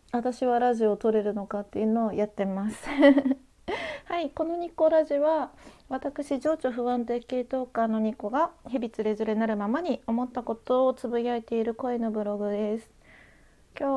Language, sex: Japanese, female